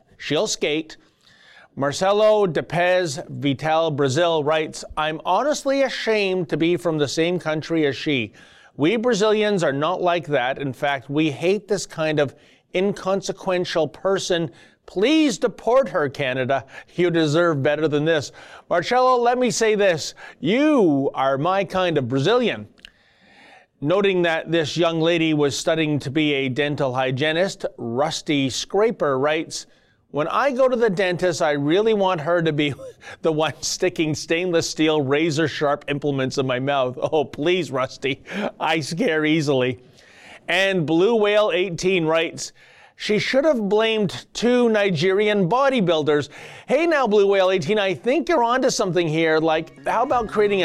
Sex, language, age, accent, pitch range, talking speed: male, English, 30-49, American, 150-205 Hz, 150 wpm